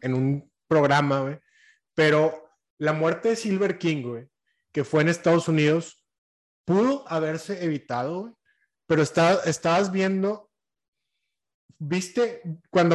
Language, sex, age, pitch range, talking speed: Spanish, male, 20-39, 155-195 Hz, 120 wpm